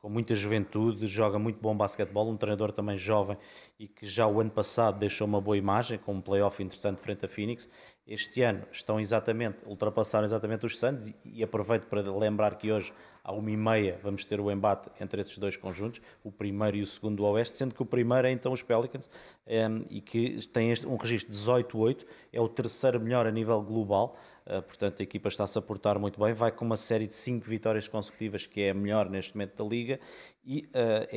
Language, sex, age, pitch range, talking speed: Portuguese, male, 20-39, 105-115 Hz, 210 wpm